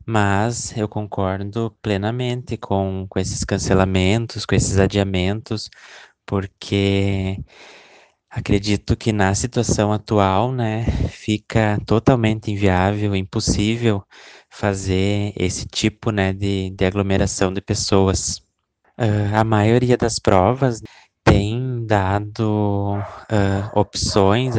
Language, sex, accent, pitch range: Portuguese, male, Brazilian, 95-110 Hz